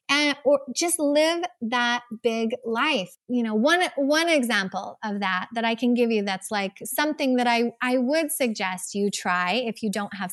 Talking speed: 190 wpm